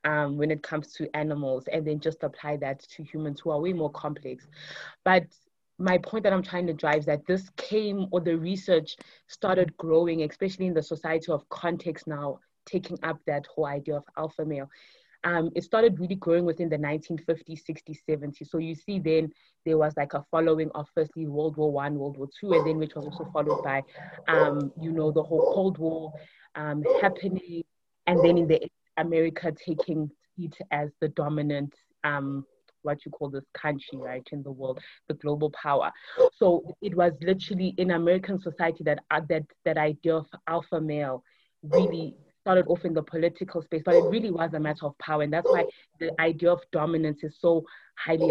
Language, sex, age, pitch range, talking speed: English, female, 20-39, 150-175 Hz, 195 wpm